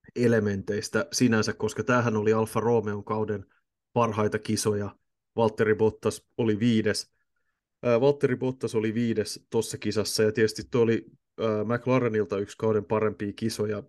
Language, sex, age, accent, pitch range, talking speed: Finnish, male, 30-49, native, 105-115 Hz, 110 wpm